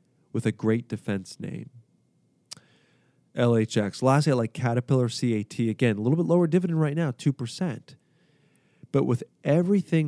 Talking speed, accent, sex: 135 wpm, American, male